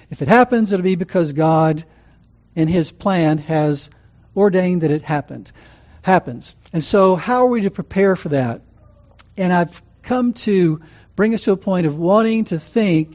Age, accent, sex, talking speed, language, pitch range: 50-69, American, male, 175 wpm, English, 145-195 Hz